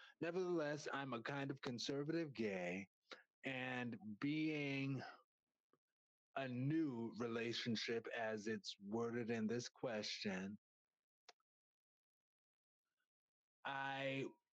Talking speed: 80 wpm